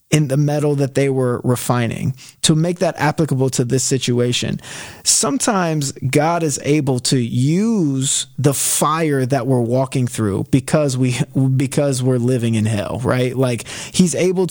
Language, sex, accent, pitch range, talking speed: English, male, American, 125-155 Hz, 155 wpm